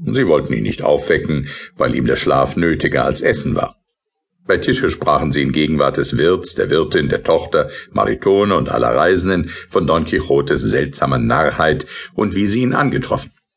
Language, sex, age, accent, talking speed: German, male, 50-69, German, 175 wpm